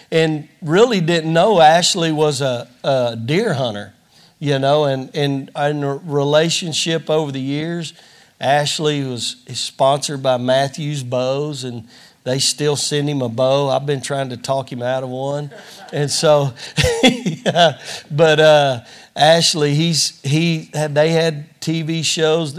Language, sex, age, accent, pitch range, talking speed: English, male, 40-59, American, 135-160 Hz, 140 wpm